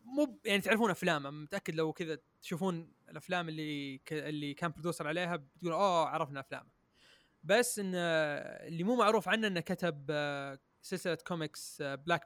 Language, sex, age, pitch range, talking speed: Arabic, male, 20-39, 150-180 Hz, 145 wpm